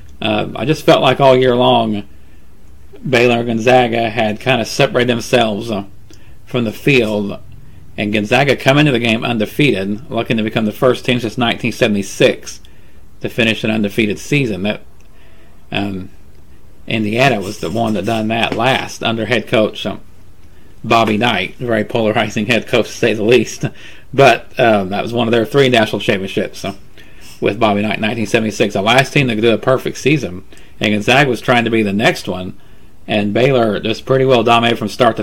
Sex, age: male, 40-59